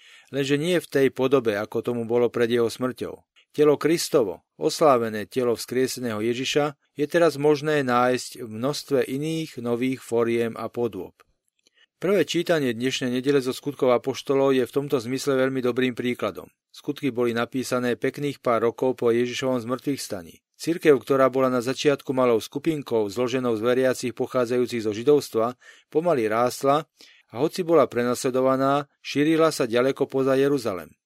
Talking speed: 145 wpm